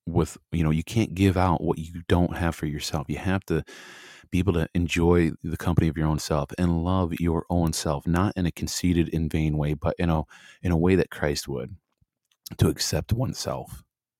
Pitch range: 75-90 Hz